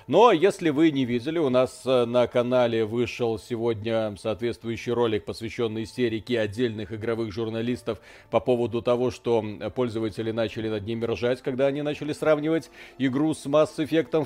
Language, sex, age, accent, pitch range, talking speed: Russian, male, 40-59, native, 115-150 Hz, 145 wpm